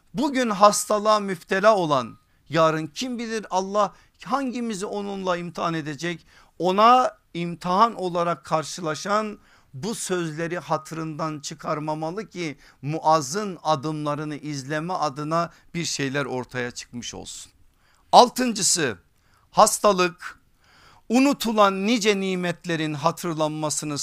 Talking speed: 90 wpm